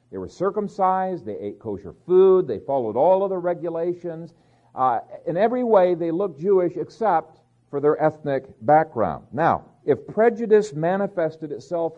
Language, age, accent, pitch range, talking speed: English, 50-69, American, 130-180 Hz, 150 wpm